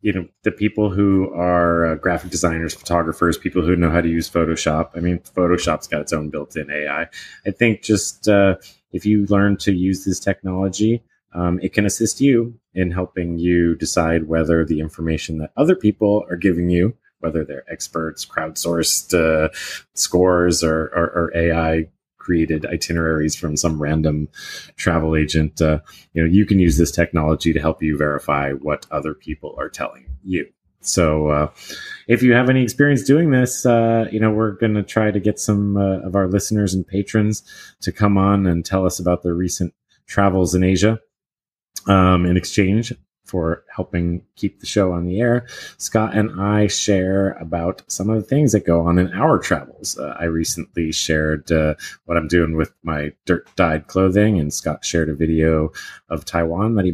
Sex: male